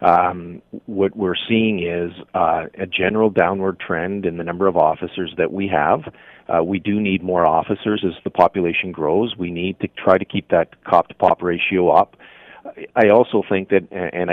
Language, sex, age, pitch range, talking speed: English, male, 40-59, 90-105 Hz, 180 wpm